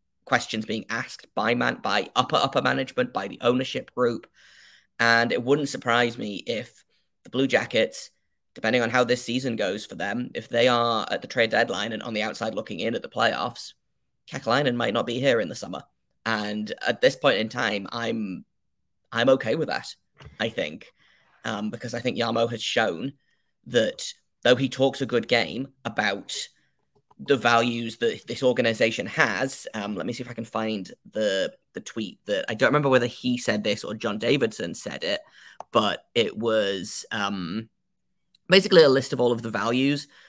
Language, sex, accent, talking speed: English, male, British, 185 wpm